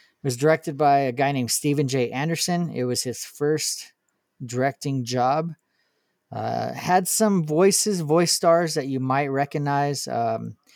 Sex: male